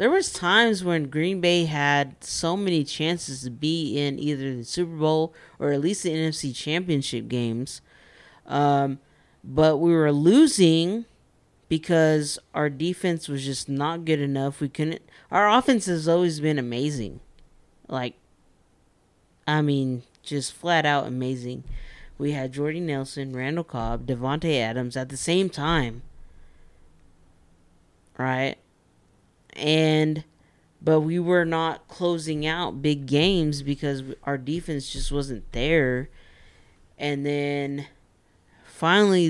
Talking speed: 125 wpm